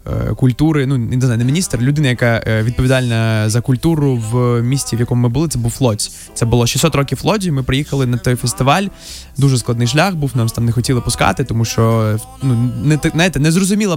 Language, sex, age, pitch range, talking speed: Ukrainian, male, 20-39, 115-140 Hz, 200 wpm